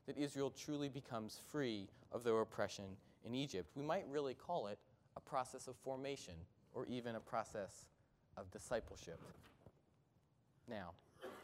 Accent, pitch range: American, 125-155 Hz